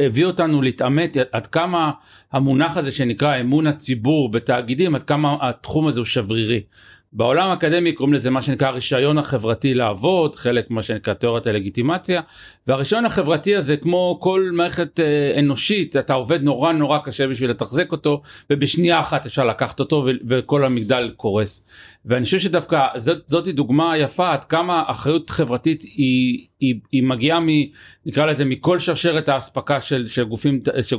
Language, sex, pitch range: Hebrew, male, 130-165 Hz